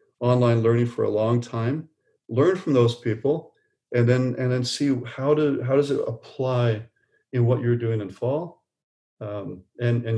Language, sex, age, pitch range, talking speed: English, male, 40-59, 115-135 Hz, 175 wpm